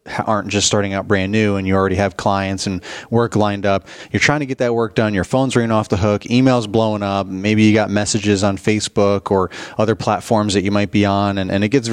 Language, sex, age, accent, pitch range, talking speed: English, male, 30-49, American, 95-110 Hz, 245 wpm